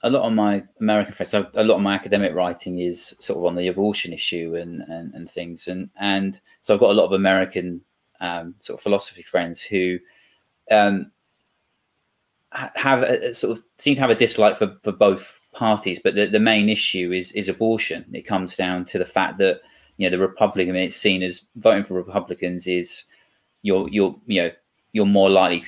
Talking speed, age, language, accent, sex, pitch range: 210 wpm, 30-49, English, British, male, 90-100 Hz